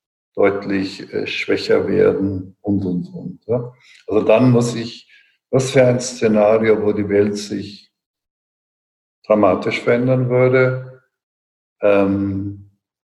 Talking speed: 110 wpm